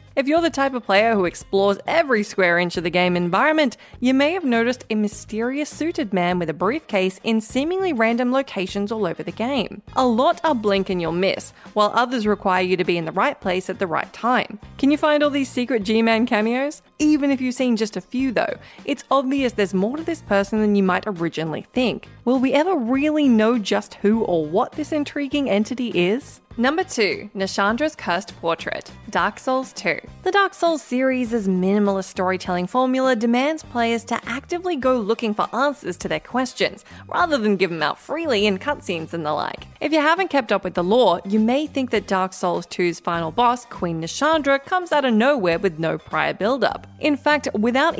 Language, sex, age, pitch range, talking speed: English, female, 20-39, 190-275 Hz, 205 wpm